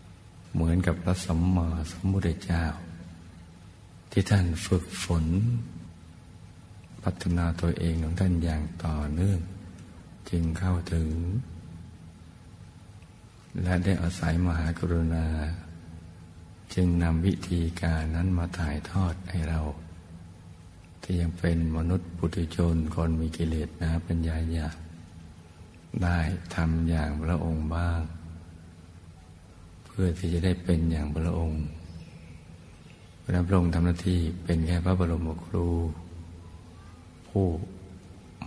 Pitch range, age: 80-90 Hz, 60-79